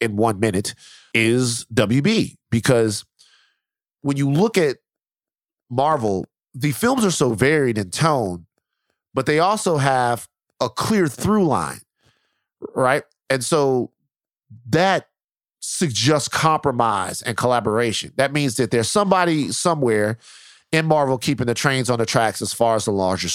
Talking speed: 135 wpm